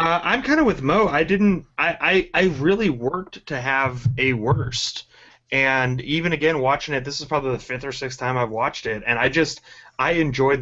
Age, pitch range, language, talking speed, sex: 30-49, 120-155 Hz, English, 215 wpm, male